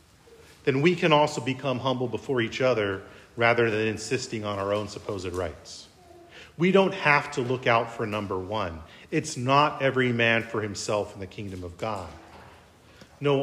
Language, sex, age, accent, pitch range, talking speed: English, male, 40-59, American, 110-155 Hz, 170 wpm